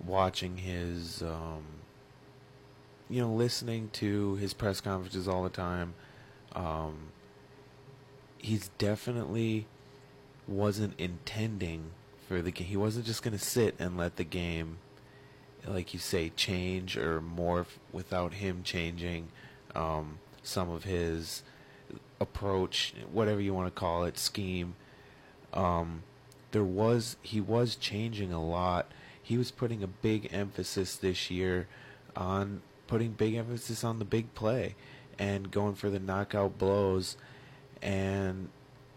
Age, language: 30-49, English